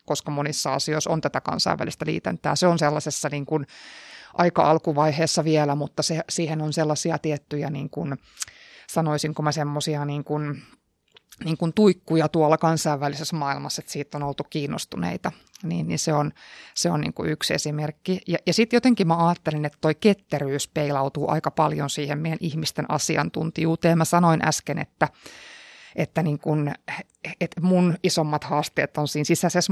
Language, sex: Finnish, female